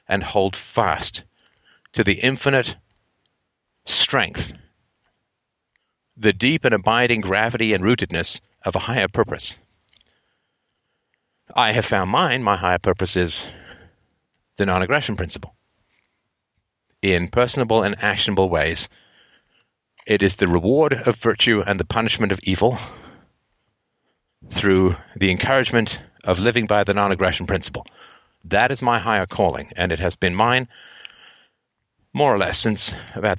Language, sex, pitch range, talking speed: English, male, 95-115 Hz, 125 wpm